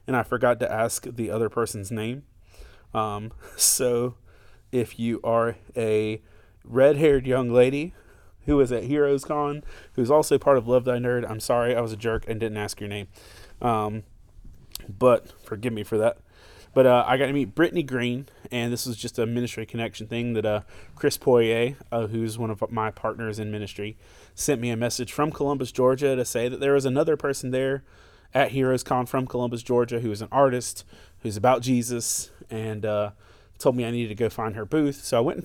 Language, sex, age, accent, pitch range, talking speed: English, male, 20-39, American, 105-125 Hz, 200 wpm